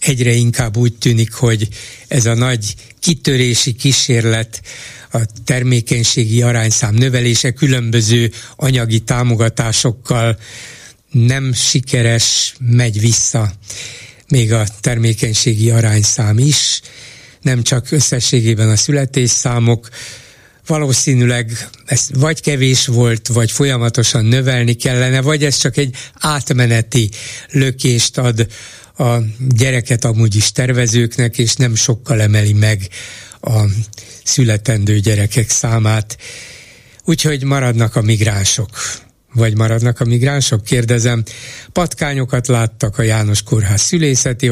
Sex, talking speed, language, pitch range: male, 100 wpm, Hungarian, 110-130 Hz